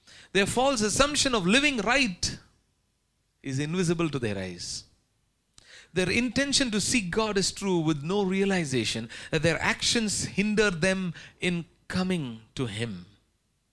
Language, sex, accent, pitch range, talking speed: English, male, Indian, 150-220 Hz, 130 wpm